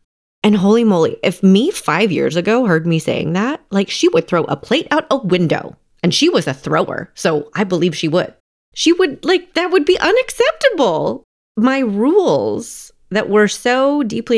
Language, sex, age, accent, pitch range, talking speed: English, female, 30-49, American, 175-260 Hz, 185 wpm